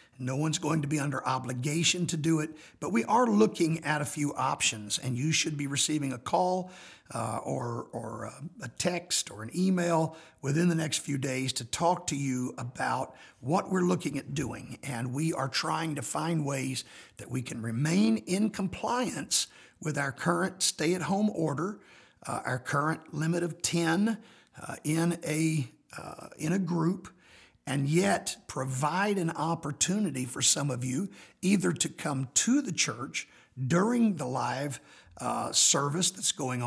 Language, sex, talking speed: English, male, 165 wpm